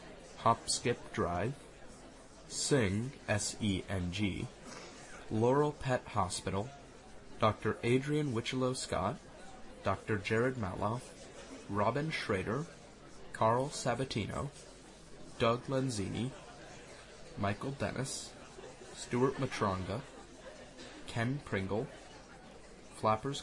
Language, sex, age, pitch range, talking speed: English, male, 30-49, 105-130 Hz, 80 wpm